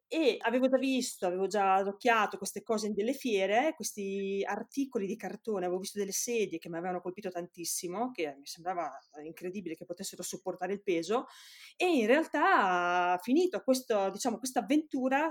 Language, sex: Italian, female